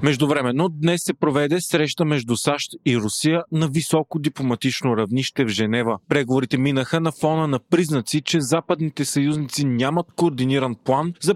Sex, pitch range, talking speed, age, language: male, 130-160 Hz, 150 wpm, 30-49, Bulgarian